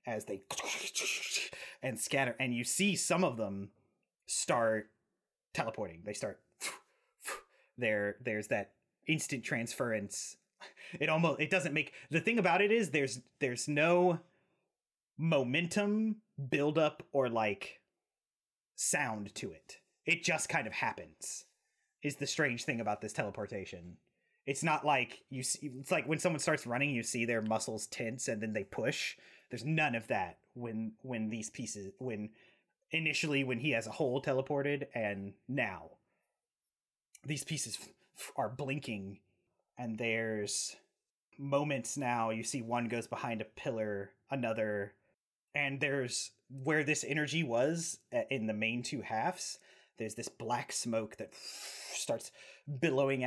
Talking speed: 140 wpm